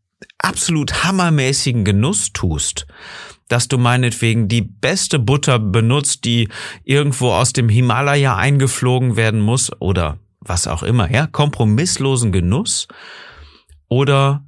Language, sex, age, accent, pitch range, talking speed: German, male, 40-59, German, 90-120 Hz, 110 wpm